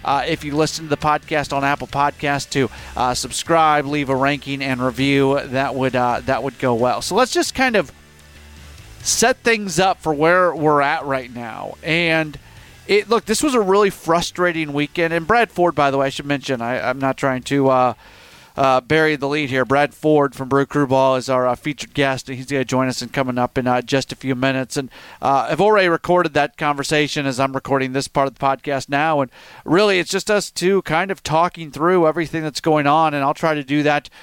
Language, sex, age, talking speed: English, male, 40-59, 215 wpm